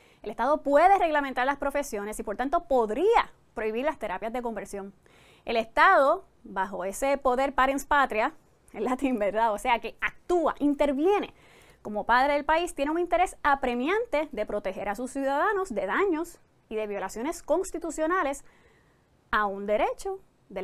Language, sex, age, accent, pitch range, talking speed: English, female, 20-39, American, 230-335 Hz, 155 wpm